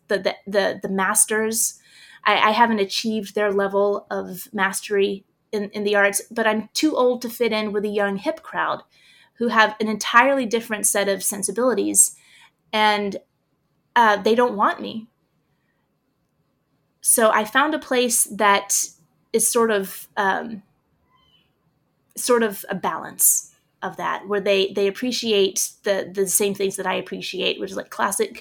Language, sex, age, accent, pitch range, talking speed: English, female, 20-39, American, 200-230 Hz, 155 wpm